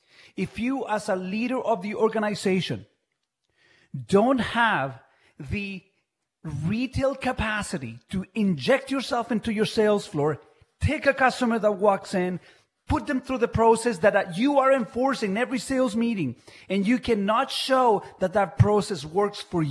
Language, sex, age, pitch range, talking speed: English, male, 40-59, 185-235 Hz, 145 wpm